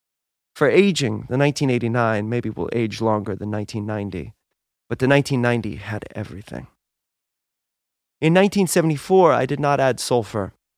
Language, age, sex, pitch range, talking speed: English, 30-49, male, 110-155 Hz, 120 wpm